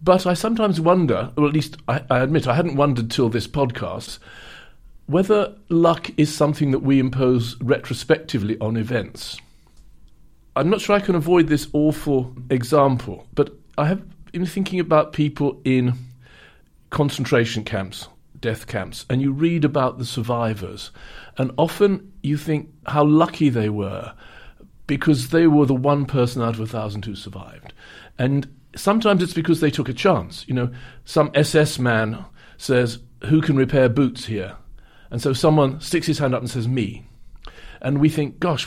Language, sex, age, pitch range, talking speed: English, male, 50-69, 120-155 Hz, 165 wpm